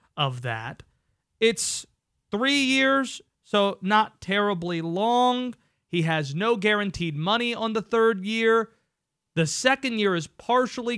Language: English